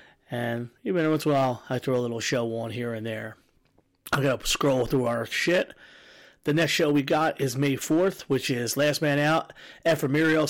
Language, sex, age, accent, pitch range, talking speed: English, male, 30-49, American, 130-155 Hz, 210 wpm